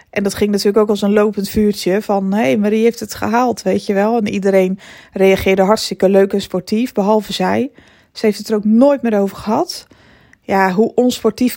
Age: 20-39